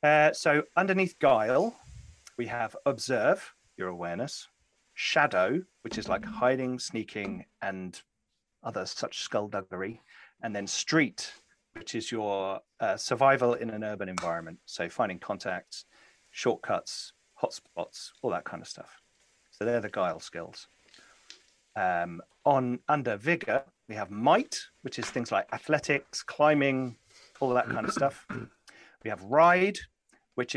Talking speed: 135 wpm